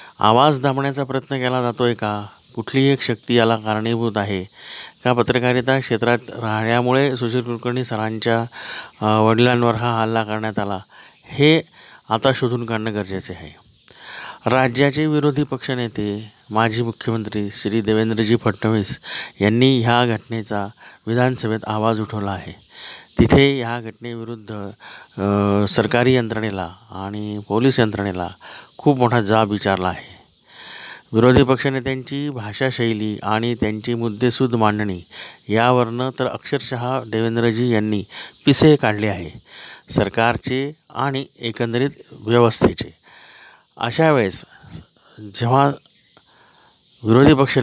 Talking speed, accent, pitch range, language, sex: 95 wpm, native, 110-130 Hz, Marathi, male